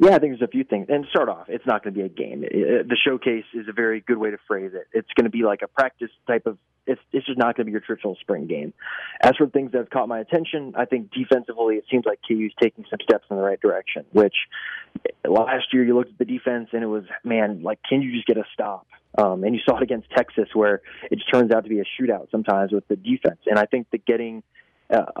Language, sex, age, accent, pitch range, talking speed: English, male, 20-39, American, 105-125 Hz, 275 wpm